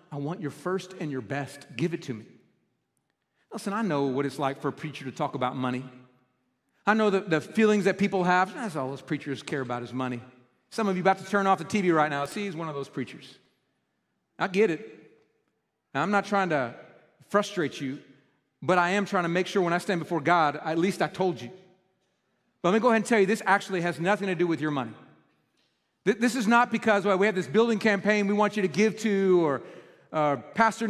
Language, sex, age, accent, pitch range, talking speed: English, male, 40-59, American, 160-220 Hz, 230 wpm